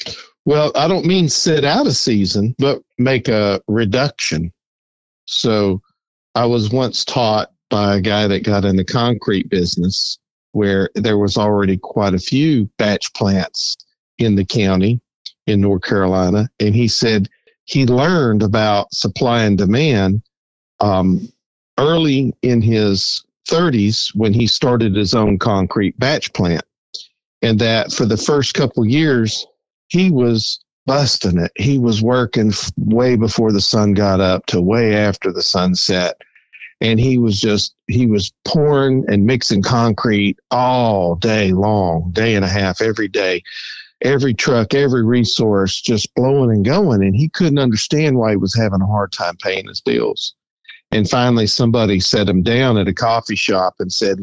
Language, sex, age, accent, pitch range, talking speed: English, male, 50-69, American, 100-125 Hz, 155 wpm